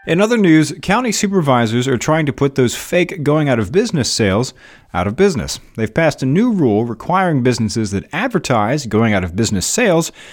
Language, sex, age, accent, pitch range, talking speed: English, male, 30-49, American, 100-140 Hz, 155 wpm